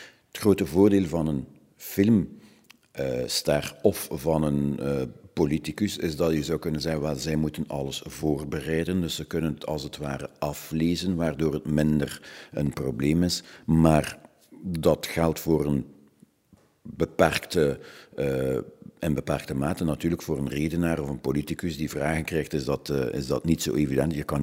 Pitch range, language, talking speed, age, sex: 75-85 Hz, Dutch, 160 wpm, 60-79, male